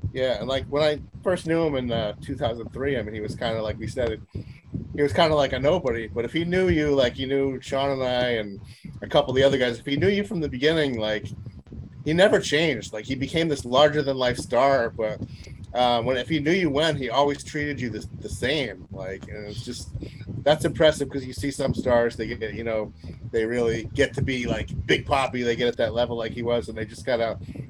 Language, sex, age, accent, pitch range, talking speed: English, male, 30-49, American, 110-140 Hz, 245 wpm